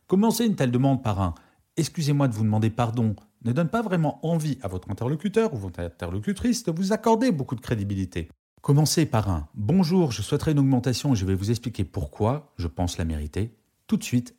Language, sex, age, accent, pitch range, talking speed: French, male, 40-59, French, 95-150 Hz, 220 wpm